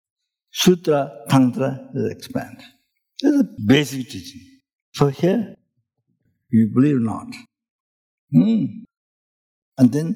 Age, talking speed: 60-79, 95 wpm